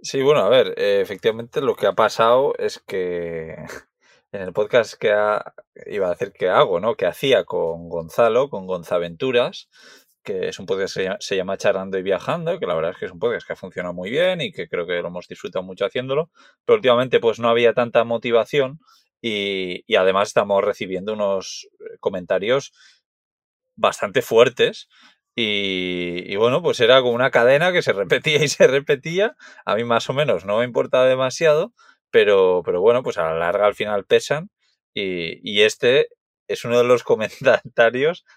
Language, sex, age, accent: Spanish, male, 20-39, Spanish